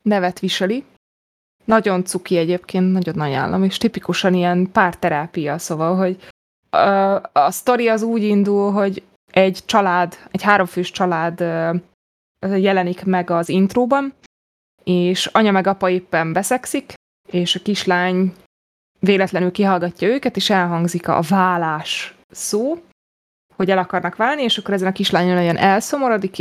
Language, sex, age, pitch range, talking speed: Hungarian, female, 20-39, 170-200 Hz, 130 wpm